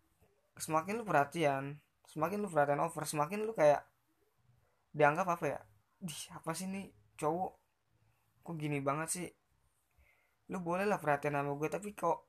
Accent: native